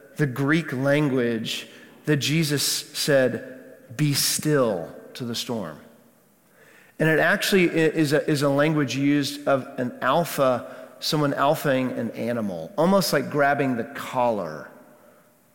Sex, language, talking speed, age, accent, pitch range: male, English, 125 wpm, 40-59, American, 135-160 Hz